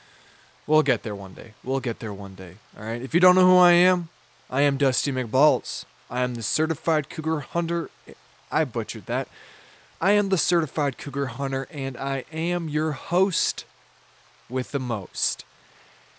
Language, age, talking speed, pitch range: English, 20-39, 165 wpm, 120-145 Hz